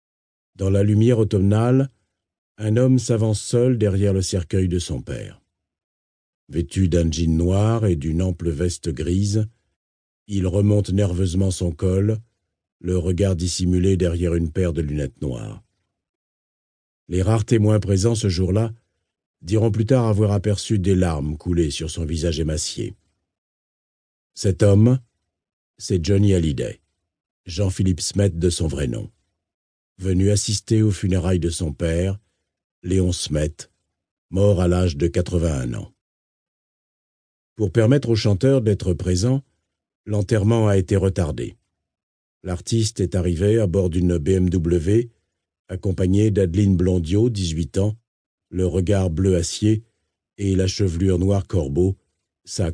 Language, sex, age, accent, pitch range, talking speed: French, male, 50-69, French, 85-105 Hz, 125 wpm